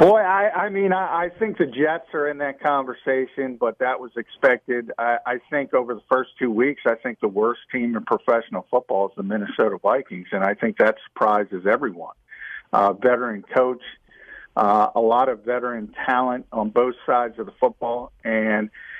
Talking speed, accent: 185 wpm, American